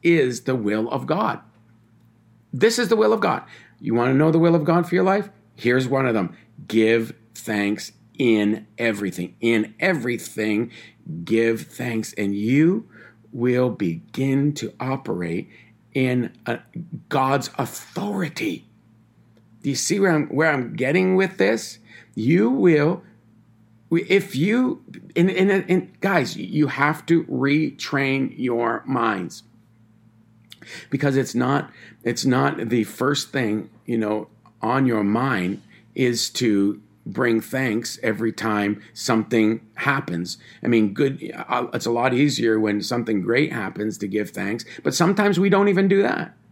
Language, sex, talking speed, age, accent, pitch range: English, male, 145 wpm, 50-69, American, 110-165 Hz